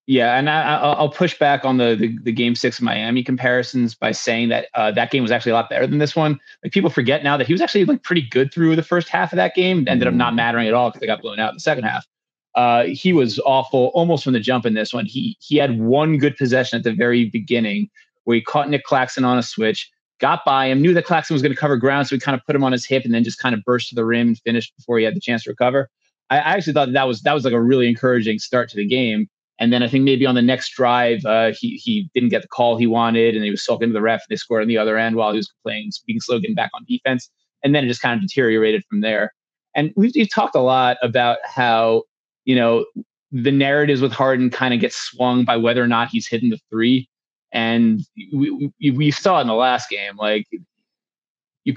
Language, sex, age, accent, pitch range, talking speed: English, male, 30-49, American, 115-150 Hz, 270 wpm